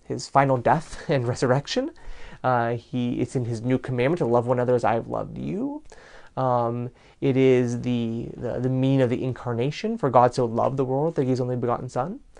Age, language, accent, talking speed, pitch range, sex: 30-49, English, American, 205 wpm, 120-170 Hz, male